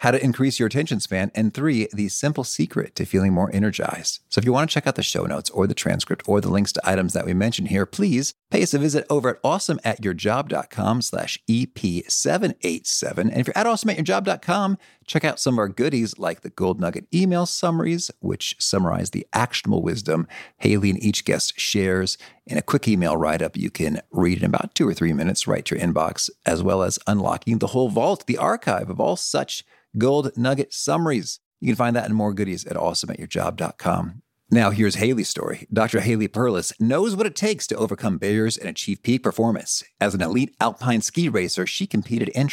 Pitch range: 105-145 Hz